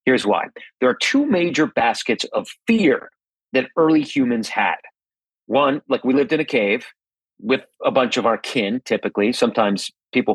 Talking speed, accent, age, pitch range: 170 wpm, American, 40-59, 125-165 Hz